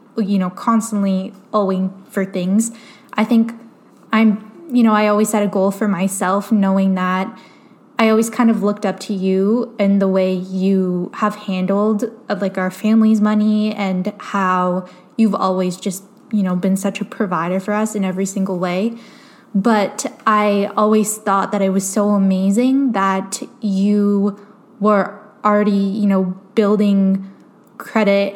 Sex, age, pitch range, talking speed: female, 10-29, 190-220 Hz, 155 wpm